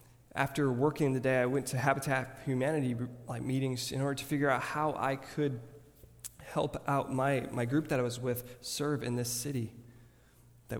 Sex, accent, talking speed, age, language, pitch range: male, American, 185 wpm, 20-39, English, 120-145 Hz